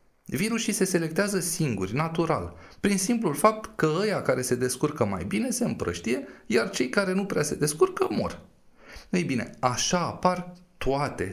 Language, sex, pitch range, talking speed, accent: Romanian, male, 115-180 Hz, 160 wpm, native